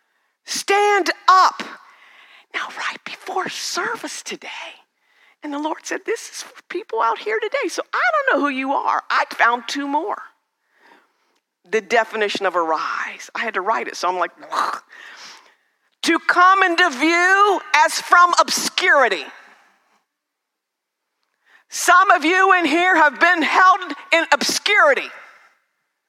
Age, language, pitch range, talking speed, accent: 50-69, English, 270-365 Hz, 135 wpm, American